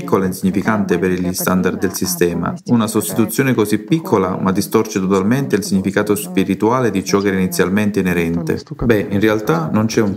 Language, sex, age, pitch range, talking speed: Italian, male, 40-59, 90-115 Hz, 170 wpm